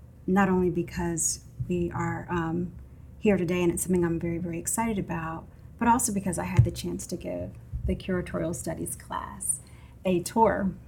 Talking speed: 170 wpm